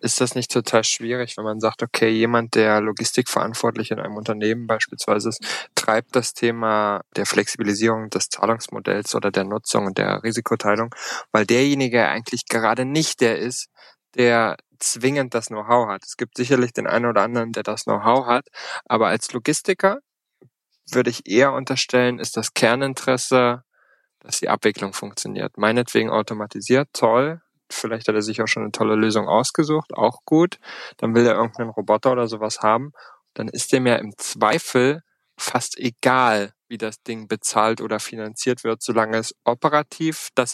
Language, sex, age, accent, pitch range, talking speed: German, male, 20-39, German, 110-130 Hz, 165 wpm